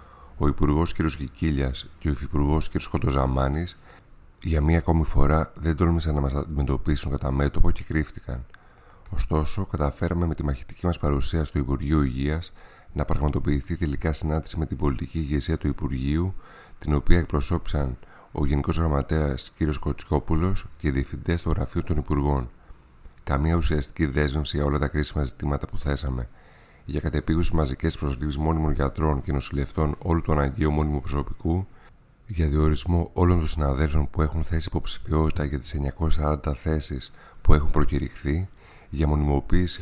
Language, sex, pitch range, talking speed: Greek, male, 70-85 Hz, 150 wpm